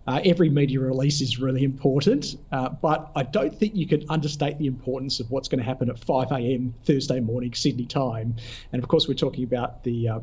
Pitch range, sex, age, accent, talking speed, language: 130-160 Hz, male, 40-59, Australian, 215 wpm, English